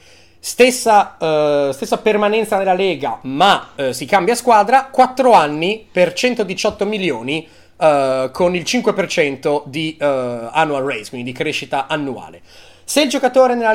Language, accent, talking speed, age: Italian, native, 145 wpm, 30-49